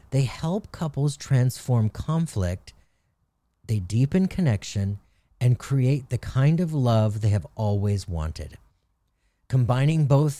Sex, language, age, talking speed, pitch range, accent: male, English, 40-59, 115 wpm, 100-135 Hz, American